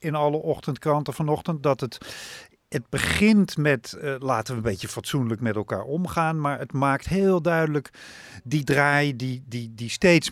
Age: 50-69